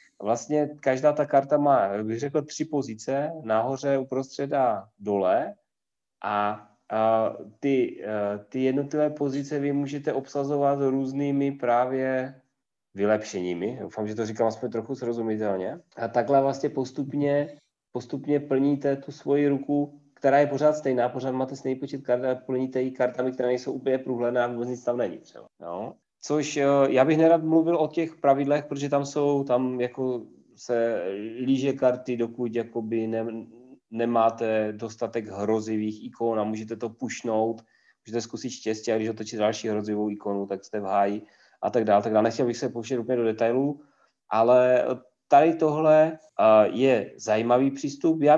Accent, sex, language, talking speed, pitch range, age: native, male, Czech, 155 wpm, 115-145 Hz, 30-49